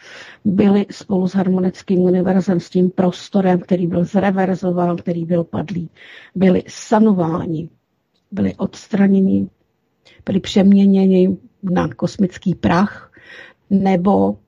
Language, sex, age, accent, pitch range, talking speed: Czech, female, 50-69, native, 180-205 Hz, 100 wpm